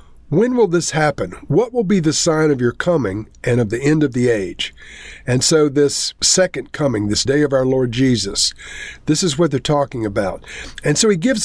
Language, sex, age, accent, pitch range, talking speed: English, male, 50-69, American, 120-155 Hz, 210 wpm